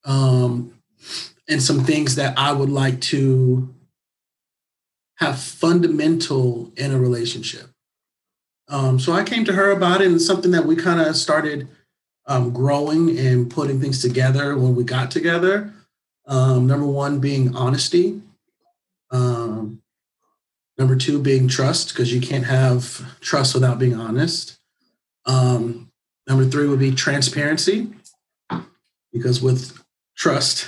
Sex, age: male, 40-59